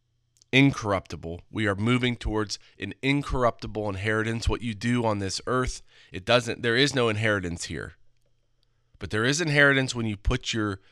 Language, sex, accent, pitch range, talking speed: English, male, American, 105-120 Hz, 160 wpm